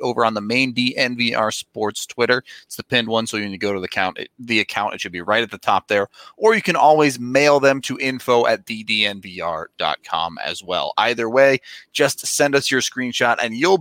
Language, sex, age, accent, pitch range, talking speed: English, male, 30-49, American, 115-145 Hz, 215 wpm